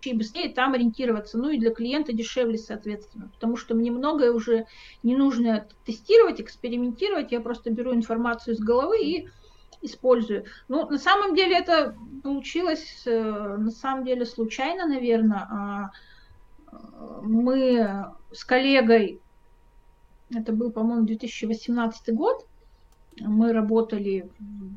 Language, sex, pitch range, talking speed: Russian, female, 225-280 Hz, 115 wpm